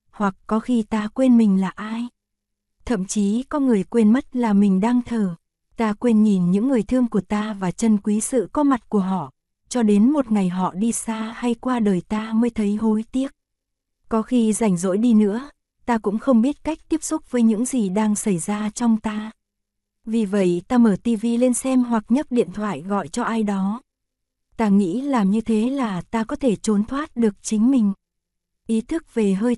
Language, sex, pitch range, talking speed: Vietnamese, female, 200-240 Hz, 210 wpm